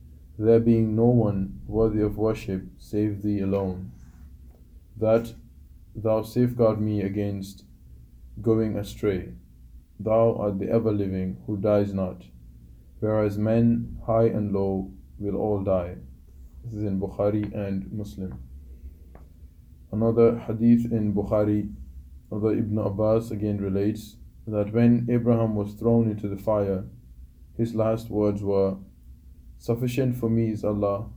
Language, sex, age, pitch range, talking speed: English, male, 20-39, 80-110 Hz, 125 wpm